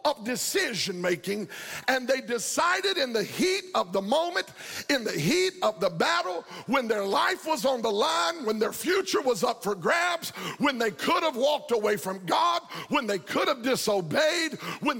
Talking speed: 185 wpm